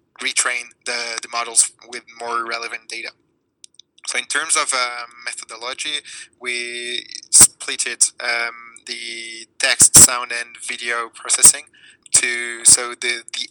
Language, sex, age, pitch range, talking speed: English, male, 20-39, 115-125 Hz, 125 wpm